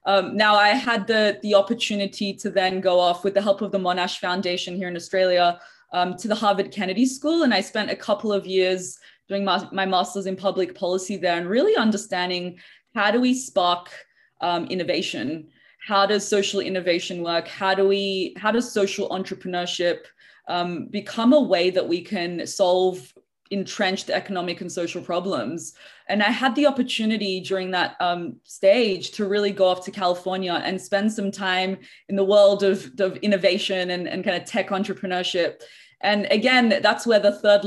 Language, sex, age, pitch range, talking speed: English, female, 20-39, 185-215 Hz, 180 wpm